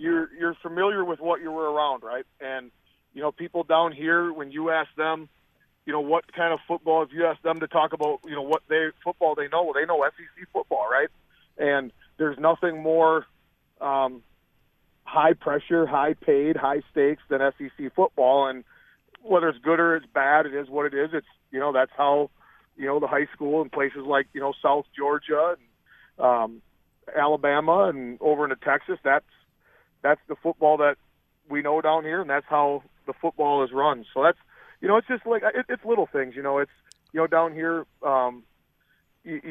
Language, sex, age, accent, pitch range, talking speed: English, male, 40-59, American, 140-165 Hz, 195 wpm